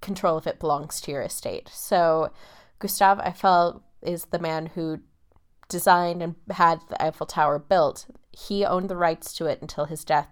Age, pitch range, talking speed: 20-39, 155-190 Hz, 175 wpm